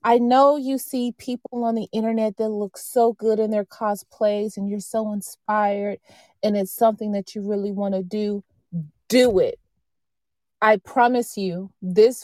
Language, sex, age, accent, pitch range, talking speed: English, female, 30-49, American, 195-230 Hz, 160 wpm